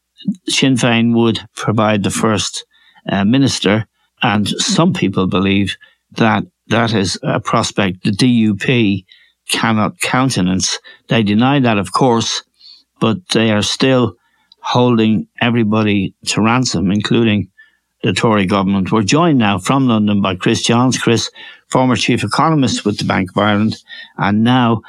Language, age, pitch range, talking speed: English, 60-79, 110-145 Hz, 135 wpm